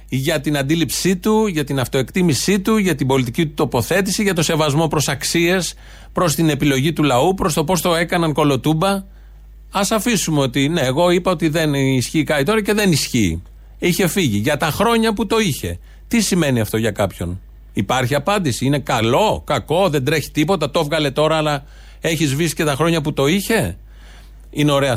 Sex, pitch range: male, 120-160 Hz